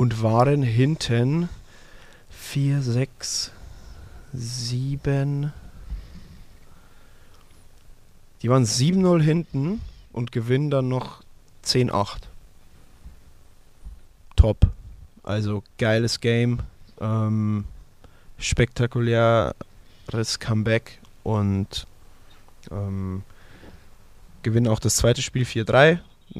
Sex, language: male, German